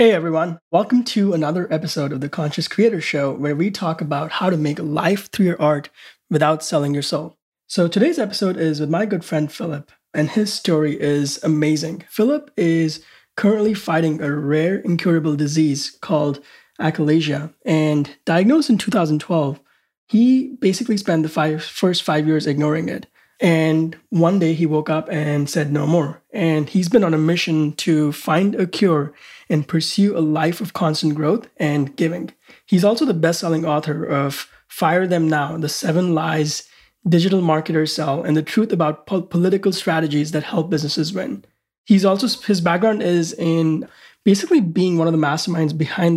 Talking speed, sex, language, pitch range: 170 wpm, male, English, 155-185 Hz